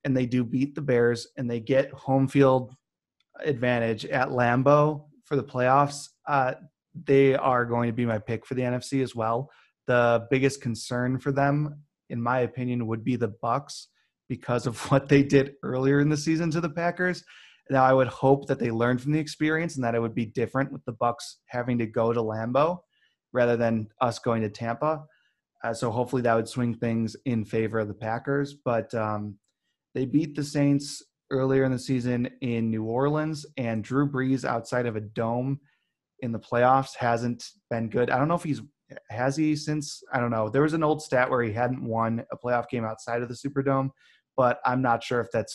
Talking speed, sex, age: 205 wpm, male, 30-49